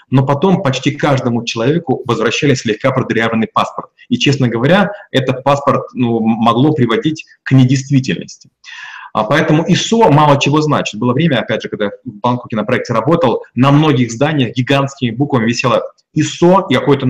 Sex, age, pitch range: male, 30-49, 125-150 Hz